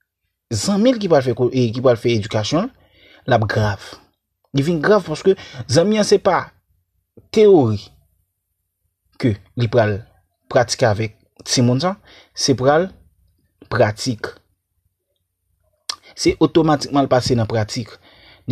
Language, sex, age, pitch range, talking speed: French, male, 30-49, 95-150 Hz, 115 wpm